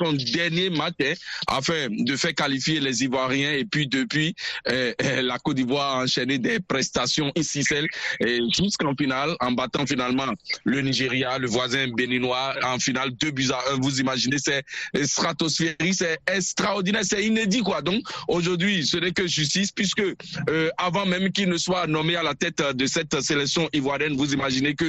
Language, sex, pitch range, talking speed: French, male, 135-165 Hz, 175 wpm